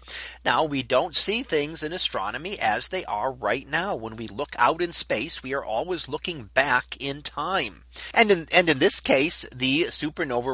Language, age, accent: English, 40-59, American